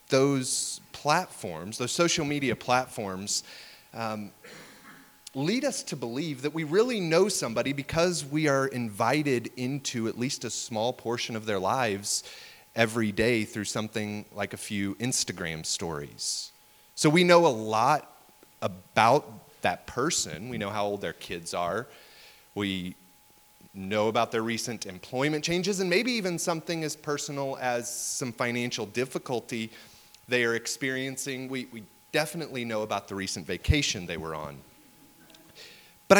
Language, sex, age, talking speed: English, male, 30-49, 140 wpm